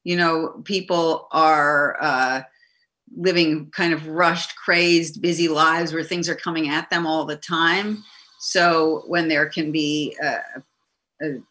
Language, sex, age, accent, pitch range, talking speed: English, female, 50-69, American, 160-200 Hz, 145 wpm